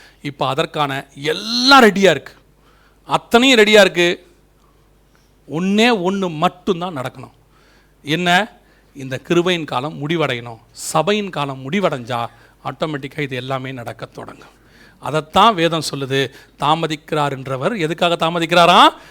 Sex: male